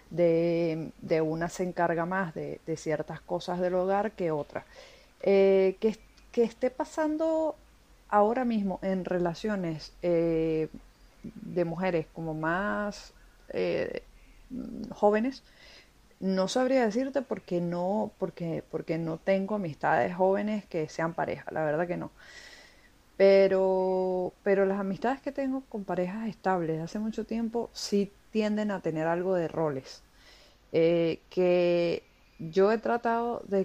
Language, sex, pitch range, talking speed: Spanish, female, 170-205 Hz, 135 wpm